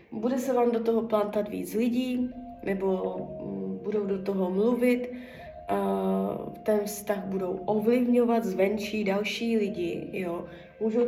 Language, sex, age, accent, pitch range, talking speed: Czech, female, 20-39, native, 195-225 Hz, 115 wpm